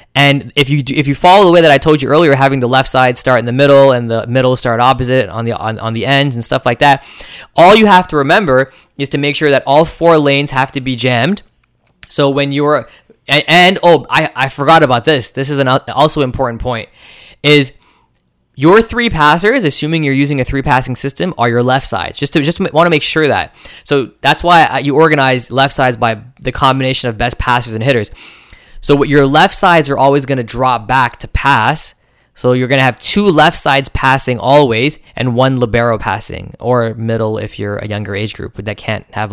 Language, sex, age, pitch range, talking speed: English, male, 10-29, 125-155 Hz, 225 wpm